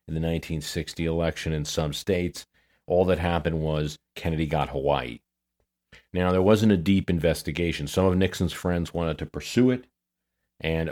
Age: 40-59